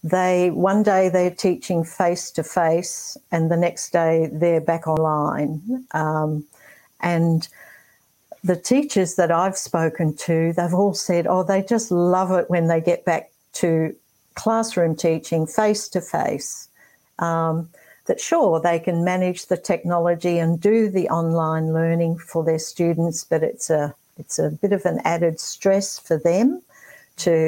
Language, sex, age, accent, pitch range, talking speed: English, female, 60-79, Australian, 165-195 Hz, 150 wpm